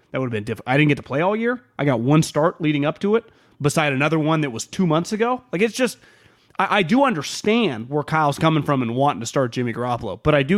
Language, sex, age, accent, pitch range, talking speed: English, male, 30-49, American, 125-170 Hz, 270 wpm